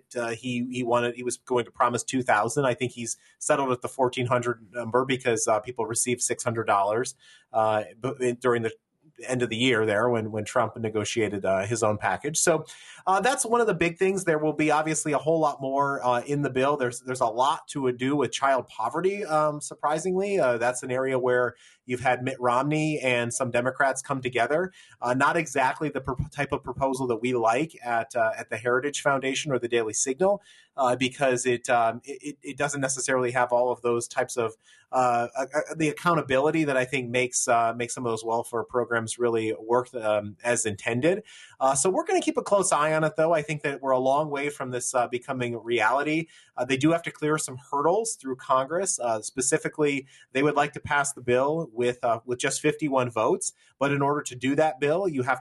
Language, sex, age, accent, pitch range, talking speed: English, male, 30-49, American, 120-145 Hz, 220 wpm